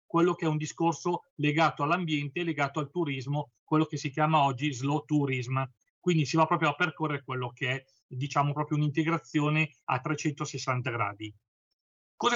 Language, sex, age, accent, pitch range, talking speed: Italian, male, 40-59, native, 145-175 Hz, 160 wpm